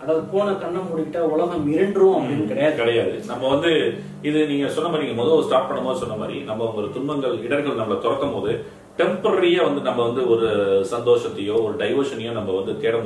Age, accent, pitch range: 30-49, native, 125-195 Hz